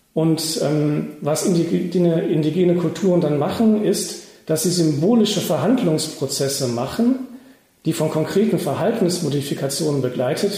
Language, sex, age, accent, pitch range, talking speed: German, male, 40-59, German, 145-185 Hz, 110 wpm